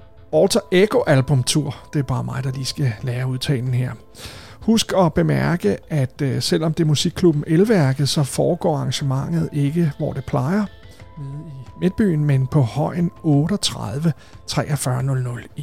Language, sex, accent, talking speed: Danish, male, native, 130 wpm